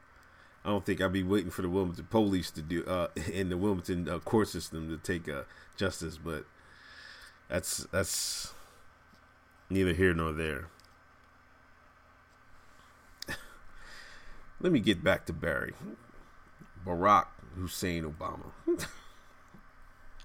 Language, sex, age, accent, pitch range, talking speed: English, male, 30-49, American, 85-100 Hz, 115 wpm